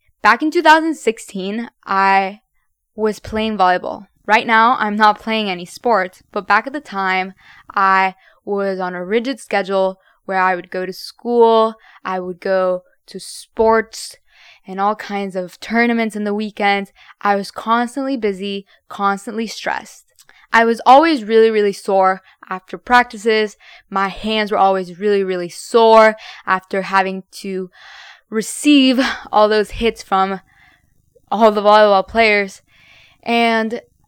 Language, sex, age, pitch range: English, female, 10-29, 190-230 Hz